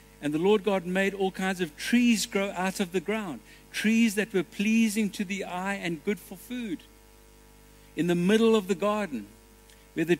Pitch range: 180-215 Hz